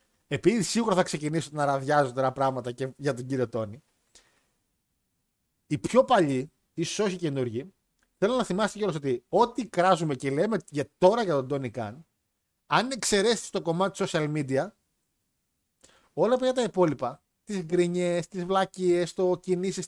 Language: Greek